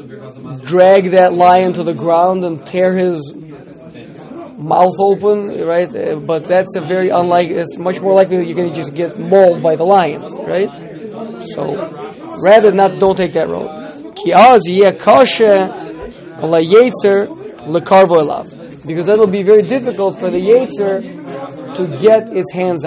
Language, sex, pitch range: English, male, 160-195 Hz